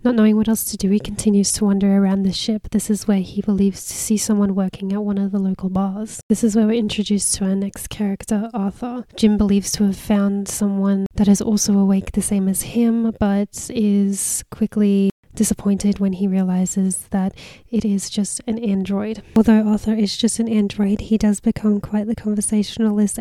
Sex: female